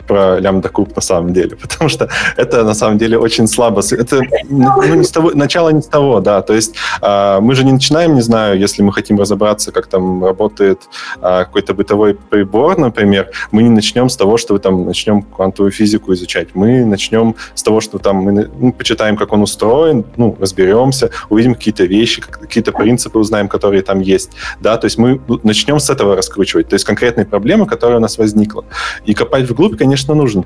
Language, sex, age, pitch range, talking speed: Russian, male, 20-39, 100-125 Hz, 195 wpm